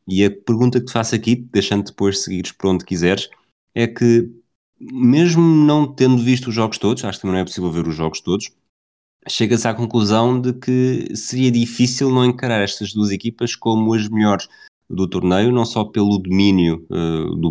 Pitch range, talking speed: 85-115 Hz, 185 wpm